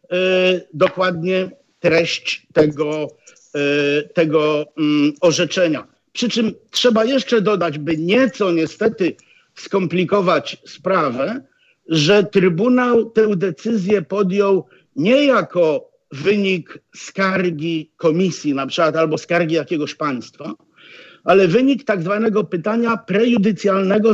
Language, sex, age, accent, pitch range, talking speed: Polish, male, 50-69, native, 165-220 Hz, 90 wpm